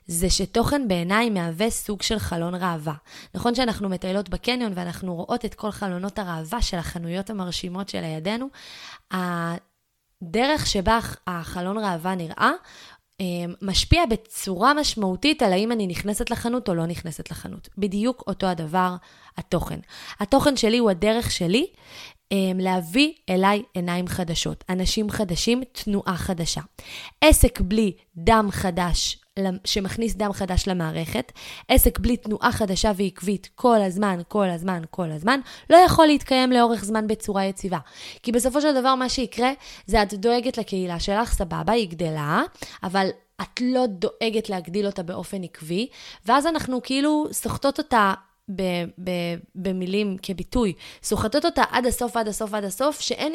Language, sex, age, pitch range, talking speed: Hebrew, female, 20-39, 185-235 Hz, 135 wpm